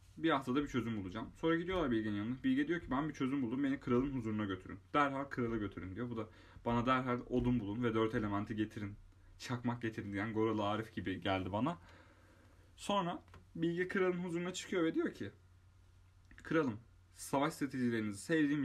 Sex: male